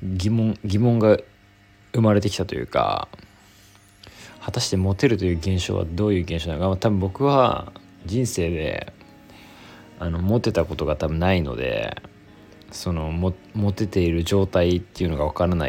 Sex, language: male, Japanese